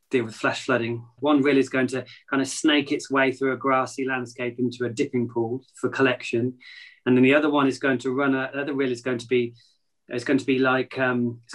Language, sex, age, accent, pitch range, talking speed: English, male, 20-39, British, 120-135 Hz, 245 wpm